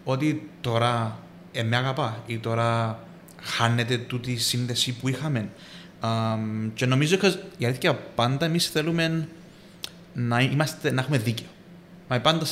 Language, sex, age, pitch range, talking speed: Greek, male, 30-49, 120-165 Hz, 145 wpm